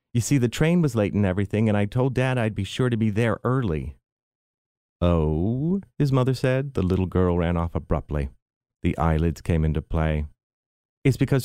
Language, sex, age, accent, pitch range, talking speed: English, male, 40-59, American, 95-130 Hz, 190 wpm